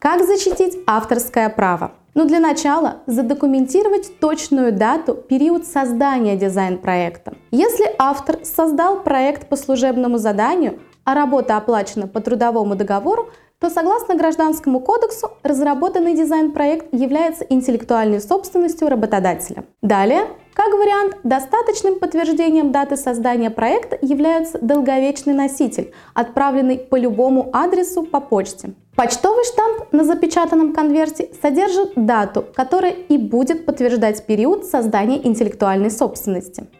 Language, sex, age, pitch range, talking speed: Russian, female, 20-39, 240-330 Hz, 110 wpm